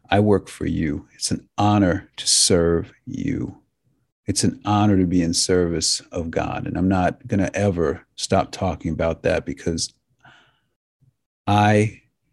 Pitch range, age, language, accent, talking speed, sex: 90-115 Hz, 50-69, English, American, 150 wpm, male